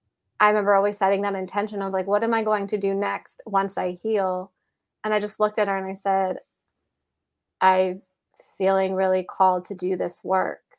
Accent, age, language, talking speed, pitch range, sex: American, 20-39, English, 195 wpm, 185-210 Hz, female